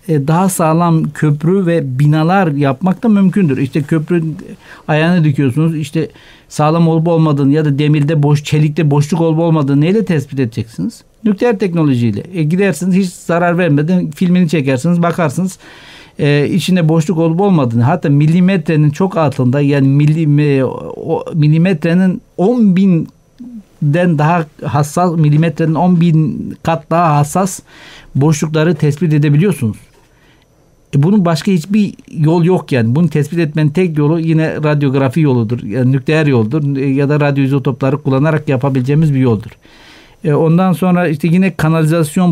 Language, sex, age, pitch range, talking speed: Turkish, male, 60-79, 145-170 Hz, 130 wpm